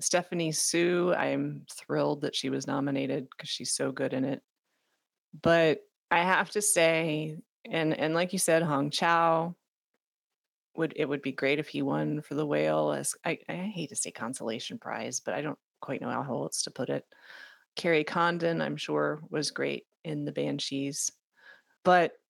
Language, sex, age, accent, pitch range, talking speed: English, female, 30-49, American, 150-180 Hz, 175 wpm